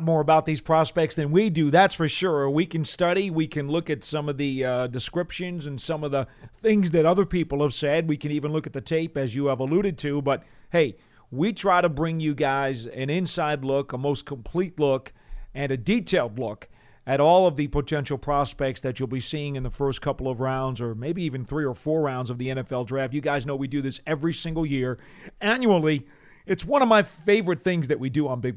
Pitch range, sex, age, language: 130-160 Hz, male, 40-59, English